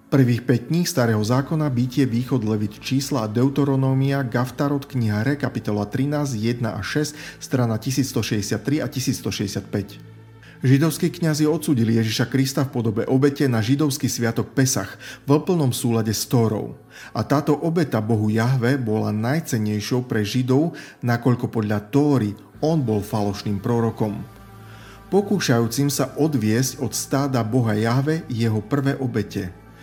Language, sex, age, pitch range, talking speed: Slovak, male, 40-59, 110-140 Hz, 130 wpm